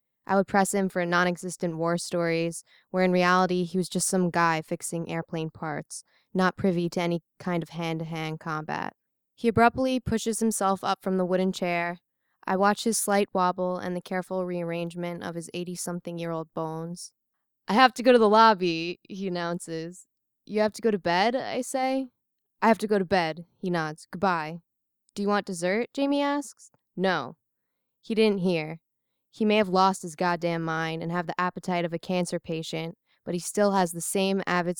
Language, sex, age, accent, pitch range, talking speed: English, female, 10-29, American, 170-195 Hz, 185 wpm